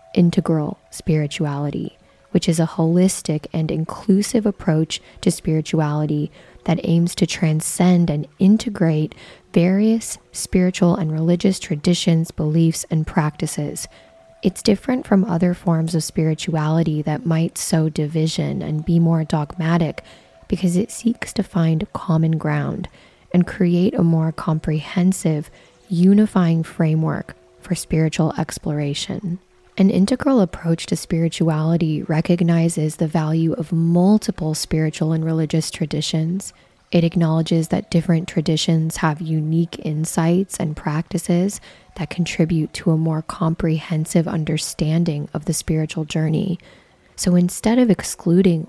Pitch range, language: 160-180 Hz, English